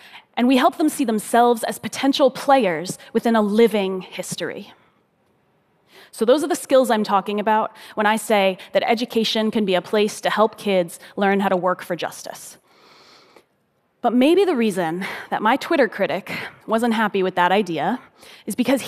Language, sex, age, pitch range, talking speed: Portuguese, female, 20-39, 205-270 Hz, 170 wpm